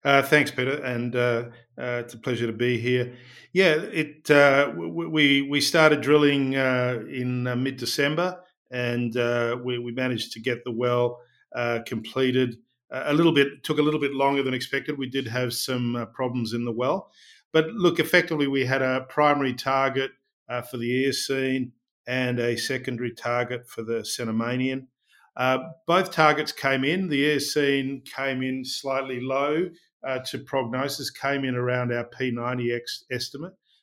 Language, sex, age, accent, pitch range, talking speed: English, male, 50-69, Australian, 120-140 Hz, 165 wpm